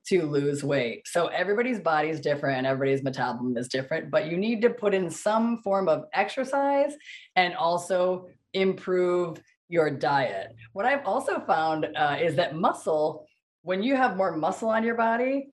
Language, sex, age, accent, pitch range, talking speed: English, female, 20-39, American, 150-205 Hz, 170 wpm